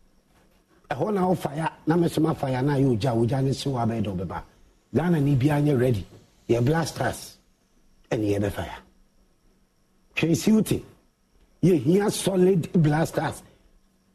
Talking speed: 120 wpm